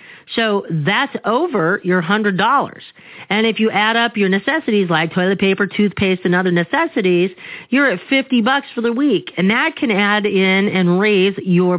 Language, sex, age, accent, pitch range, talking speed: English, female, 40-59, American, 175-225 Hz, 175 wpm